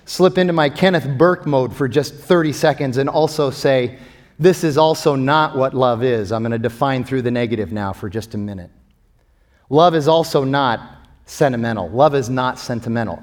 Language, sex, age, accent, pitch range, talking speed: English, male, 30-49, American, 115-155 Hz, 185 wpm